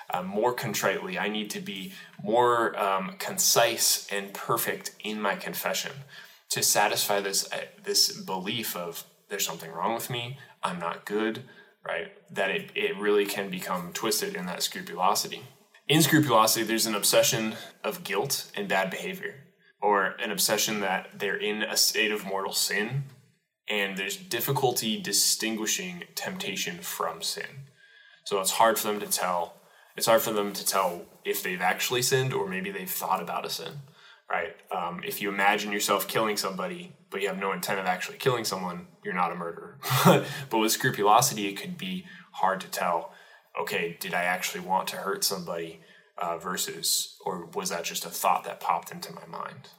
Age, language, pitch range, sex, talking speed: 10-29, English, 100-145 Hz, male, 175 wpm